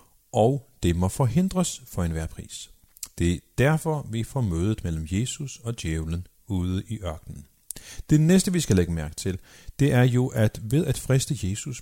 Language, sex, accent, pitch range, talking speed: Danish, male, native, 90-130 Hz, 180 wpm